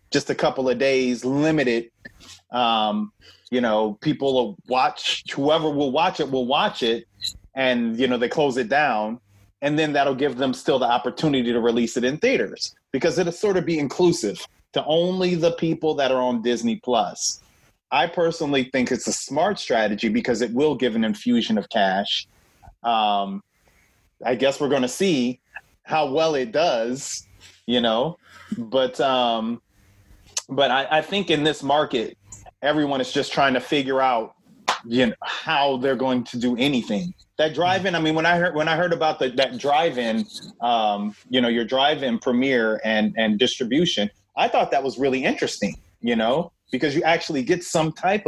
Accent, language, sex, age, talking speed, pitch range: American, English, male, 30-49, 180 wpm, 115-155 Hz